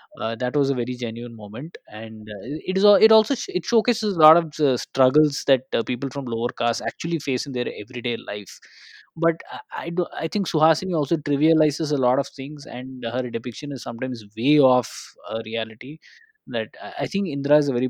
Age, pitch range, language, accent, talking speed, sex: 20-39, 120-150 Hz, English, Indian, 205 wpm, male